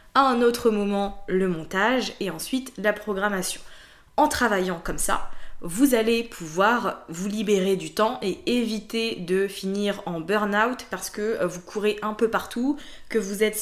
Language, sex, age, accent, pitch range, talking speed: French, female, 20-39, French, 190-235 Hz, 160 wpm